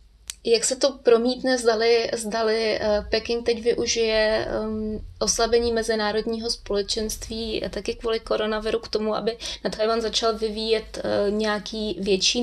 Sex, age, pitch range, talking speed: female, 20-39, 200-225 Hz, 115 wpm